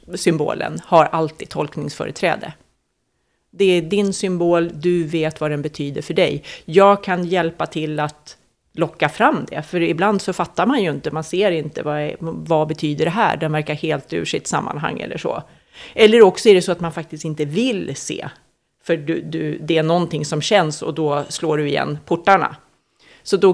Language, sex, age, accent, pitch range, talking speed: Swedish, female, 40-59, native, 160-205 Hz, 190 wpm